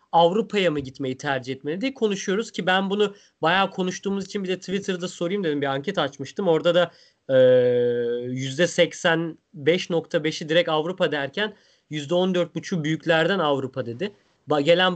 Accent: native